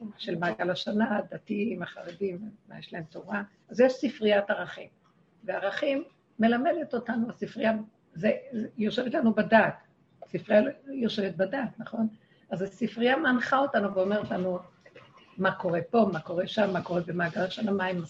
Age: 50-69